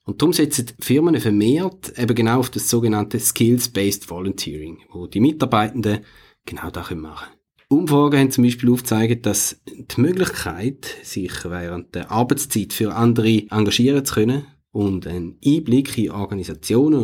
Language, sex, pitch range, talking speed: German, male, 100-130 Hz, 145 wpm